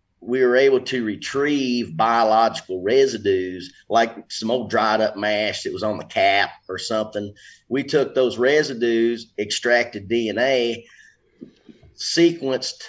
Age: 30-49